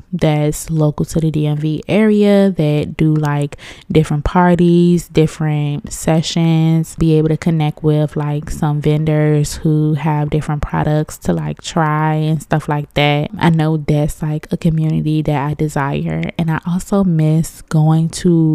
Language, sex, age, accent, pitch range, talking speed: English, female, 20-39, American, 150-170 Hz, 150 wpm